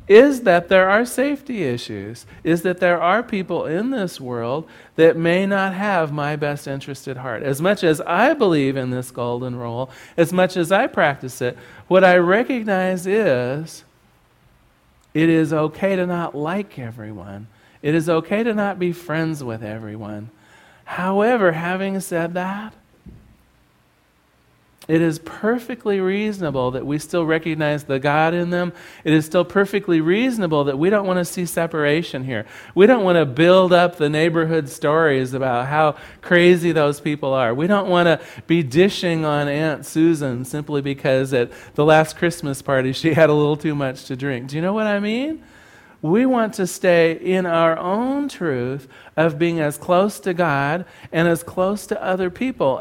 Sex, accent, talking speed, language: male, American, 175 wpm, English